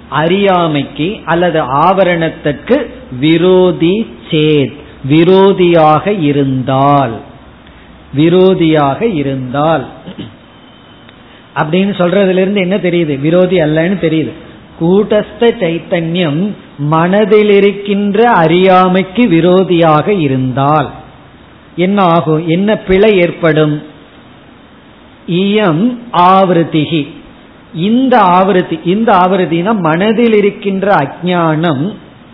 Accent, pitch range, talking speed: native, 160-205 Hz, 50 wpm